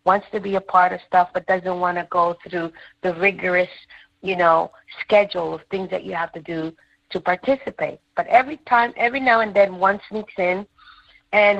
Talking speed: 195 wpm